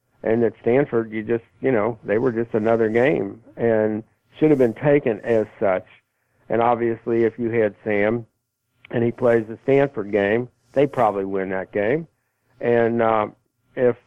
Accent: American